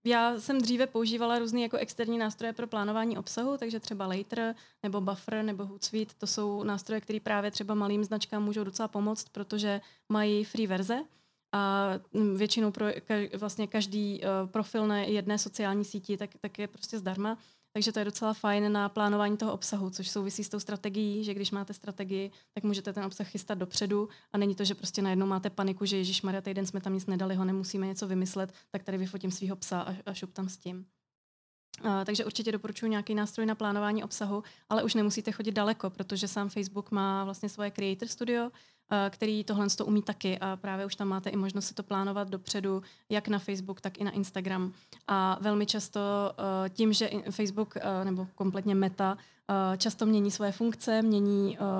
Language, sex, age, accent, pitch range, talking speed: Czech, female, 20-39, native, 195-215 Hz, 190 wpm